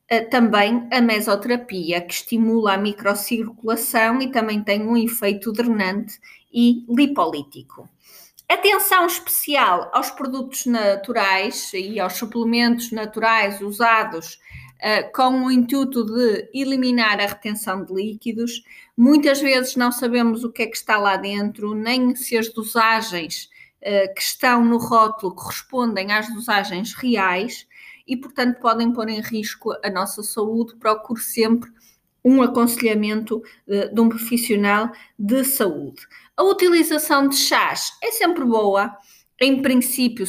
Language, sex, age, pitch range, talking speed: Portuguese, female, 20-39, 210-255 Hz, 125 wpm